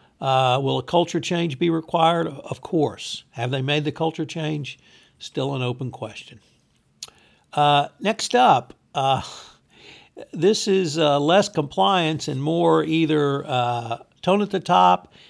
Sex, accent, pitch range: male, American, 135-170 Hz